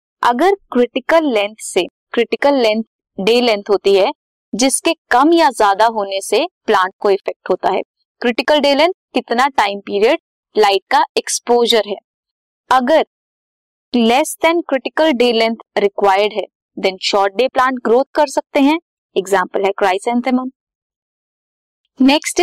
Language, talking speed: Hindi, 120 wpm